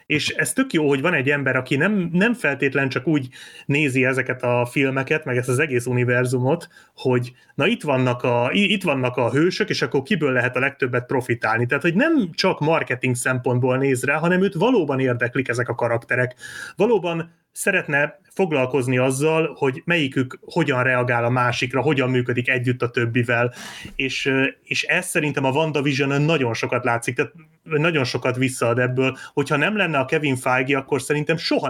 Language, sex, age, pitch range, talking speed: Hungarian, male, 30-49, 125-155 Hz, 170 wpm